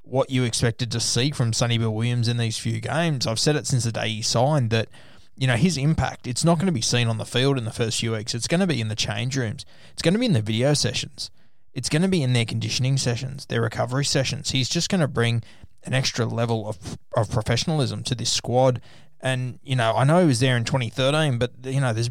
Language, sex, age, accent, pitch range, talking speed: English, male, 20-39, Australian, 115-145 Hz, 260 wpm